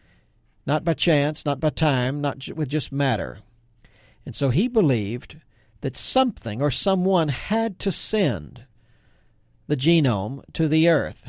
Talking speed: 140 wpm